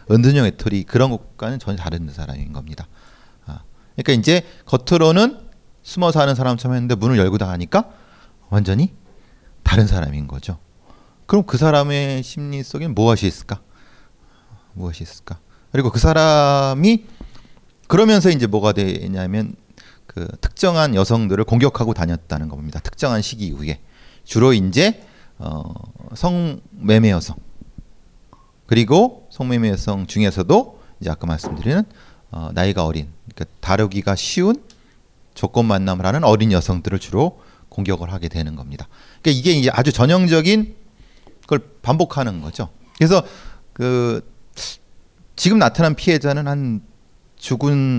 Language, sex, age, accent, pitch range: Korean, male, 40-59, native, 95-145 Hz